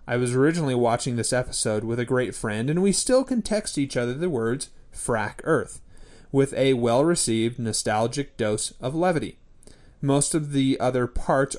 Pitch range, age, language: 120-160 Hz, 30-49, English